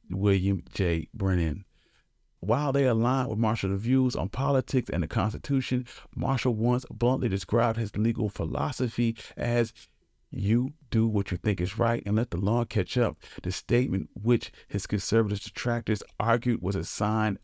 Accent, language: American, English